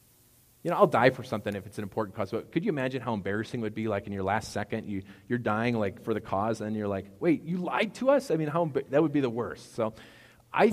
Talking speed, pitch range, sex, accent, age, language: 280 wpm, 100-125 Hz, male, American, 40-59, English